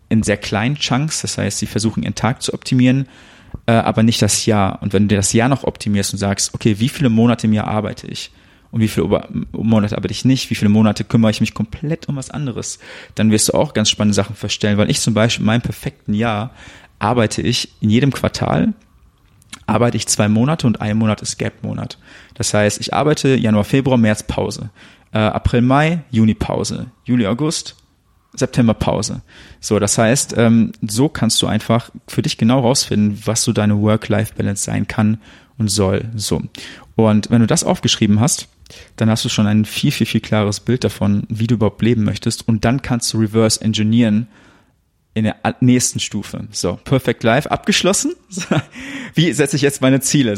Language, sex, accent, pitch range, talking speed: German, male, German, 105-125 Hz, 185 wpm